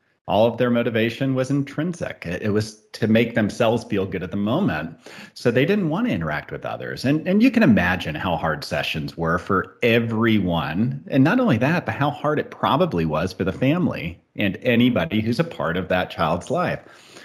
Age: 40-59